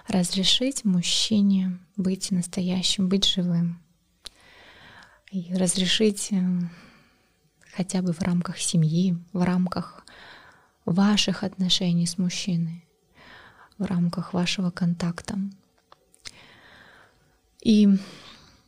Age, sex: 20-39, female